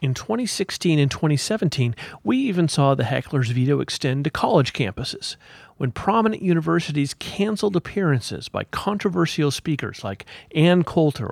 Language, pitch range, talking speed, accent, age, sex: English, 130-175 Hz, 135 wpm, American, 40-59, male